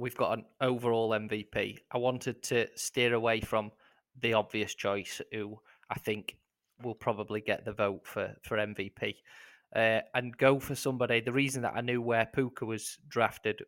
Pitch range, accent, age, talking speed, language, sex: 115-130 Hz, British, 20-39, 170 wpm, English, male